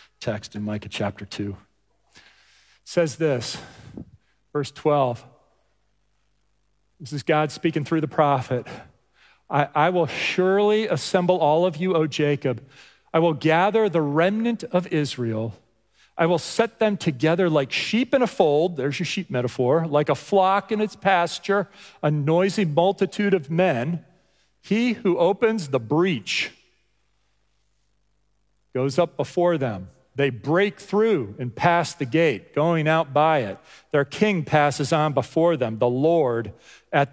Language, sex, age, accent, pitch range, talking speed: English, male, 40-59, American, 130-170 Hz, 140 wpm